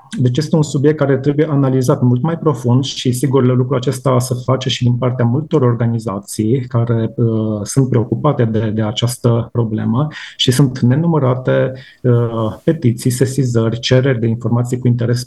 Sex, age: male, 30-49